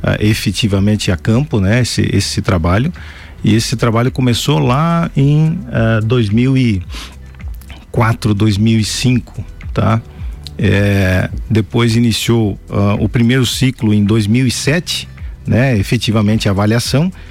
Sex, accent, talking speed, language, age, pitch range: male, Brazilian, 105 wpm, Portuguese, 50-69, 100-125 Hz